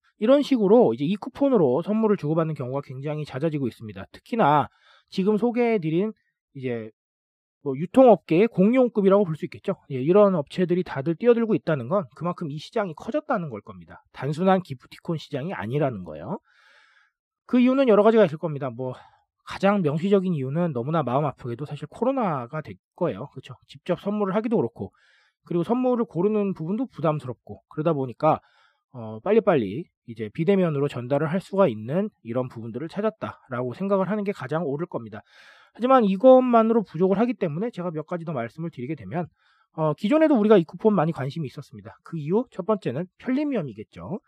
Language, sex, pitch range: Korean, male, 145-225 Hz